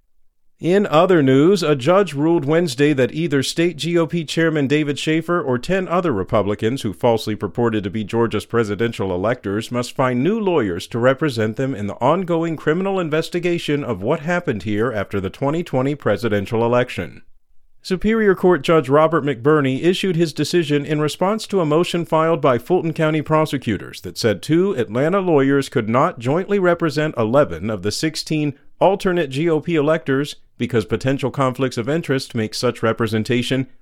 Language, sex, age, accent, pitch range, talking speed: English, male, 50-69, American, 120-165 Hz, 160 wpm